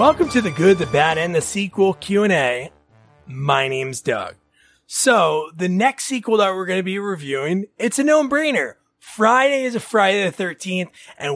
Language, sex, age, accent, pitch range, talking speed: English, male, 30-49, American, 160-215 Hz, 175 wpm